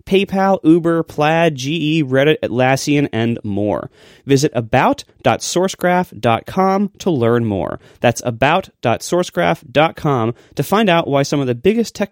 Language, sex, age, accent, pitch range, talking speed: English, male, 30-49, American, 115-165 Hz, 120 wpm